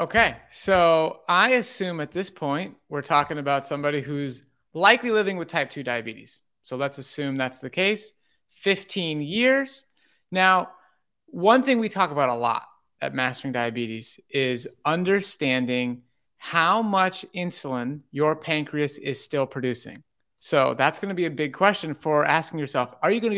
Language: English